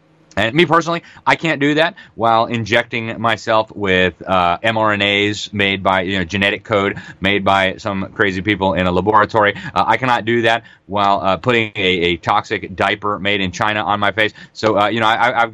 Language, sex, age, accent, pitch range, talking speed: English, male, 30-49, American, 95-120 Hz, 195 wpm